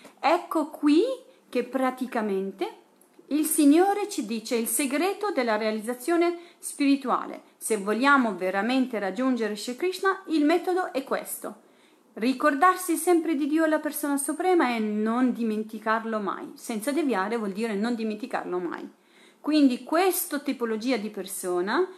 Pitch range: 215-305 Hz